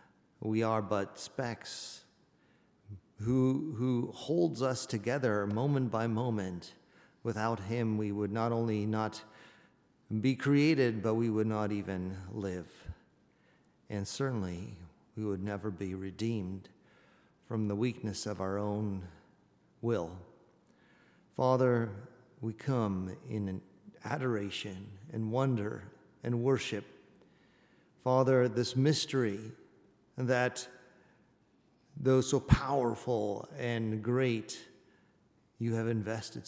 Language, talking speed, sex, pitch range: English, 100 wpm, male, 105-125 Hz